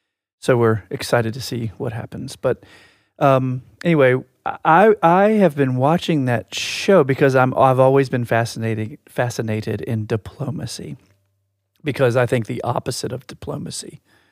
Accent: American